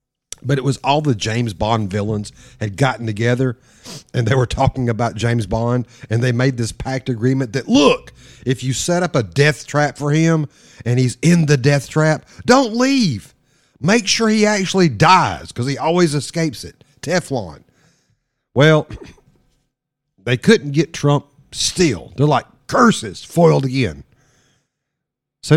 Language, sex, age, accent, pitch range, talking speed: English, male, 50-69, American, 115-145 Hz, 155 wpm